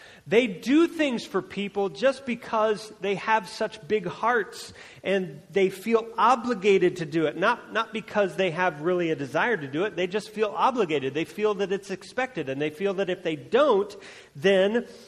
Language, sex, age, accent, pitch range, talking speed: English, male, 40-59, American, 130-190 Hz, 185 wpm